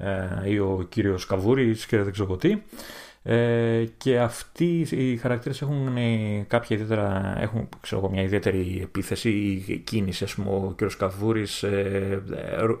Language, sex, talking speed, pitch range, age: Greek, male, 230 wpm, 100-125 Hz, 30-49